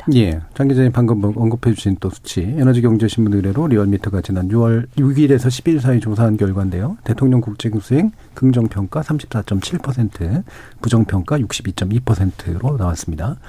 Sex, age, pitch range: male, 40-59, 110-145 Hz